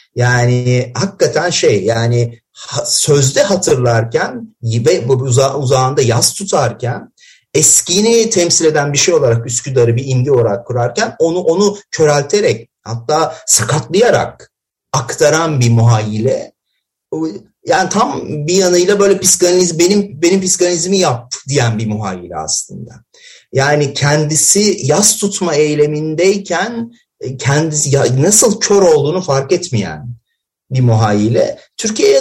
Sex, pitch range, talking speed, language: male, 125-180 Hz, 105 wpm, Turkish